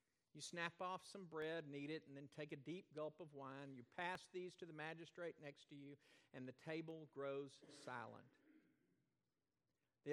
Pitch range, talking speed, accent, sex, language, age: 140-185 Hz, 180 wpm, American, male, English, 50-69